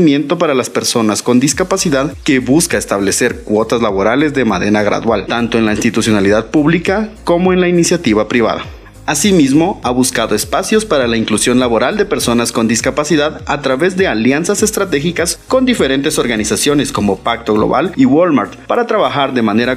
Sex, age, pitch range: male, 30-49, 115-180 Hz